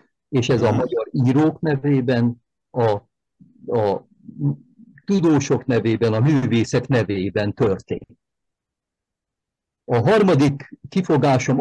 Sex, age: male, 50-69